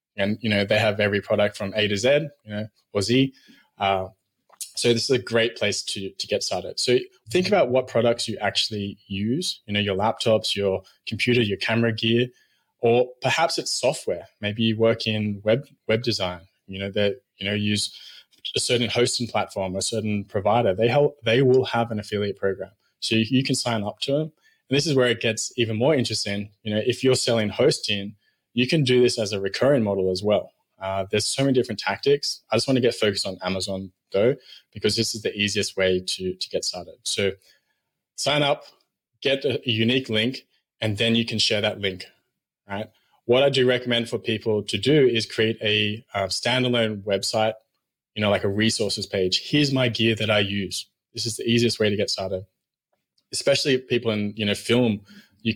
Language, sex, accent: English, male, Australian